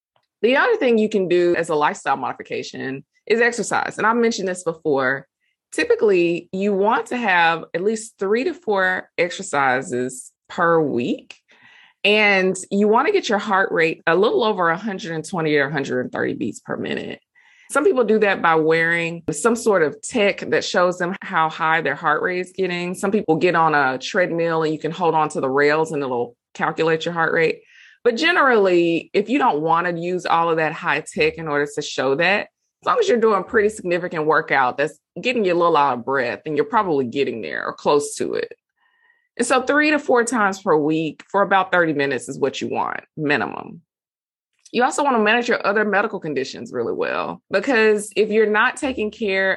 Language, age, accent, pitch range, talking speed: English, 20-39, American, 160-220 Hz, 200 wpm